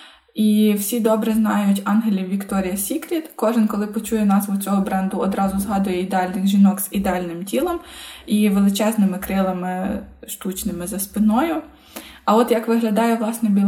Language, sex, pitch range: Ukrainian, female, 205-235 Hz